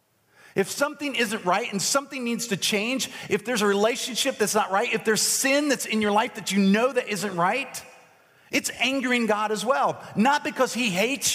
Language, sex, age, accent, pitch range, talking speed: English, male, 40-59, American, 140-220 Hz, 200 wpm